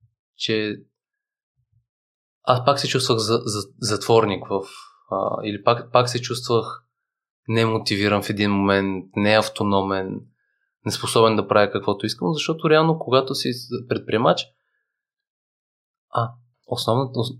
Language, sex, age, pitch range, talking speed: Bulgarian, male, 20-39, 105-135 Hz, 110 wpm